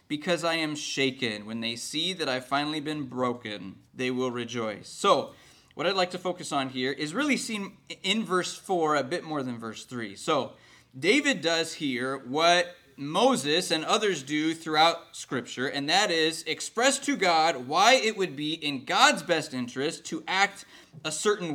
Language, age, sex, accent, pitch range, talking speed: English, 20-39, male, American, 125-170 Hz, 180 wpm